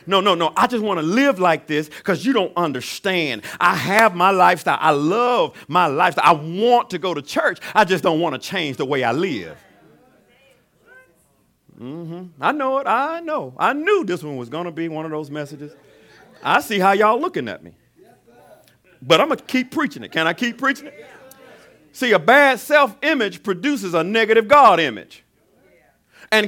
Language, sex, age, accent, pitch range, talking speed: English, male, 50-69, American, 160-235 Hz, 195 wpm